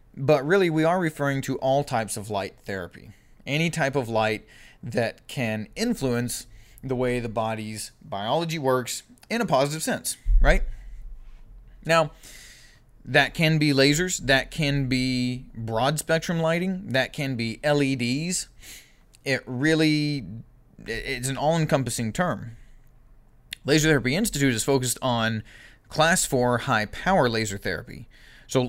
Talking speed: 130 wpm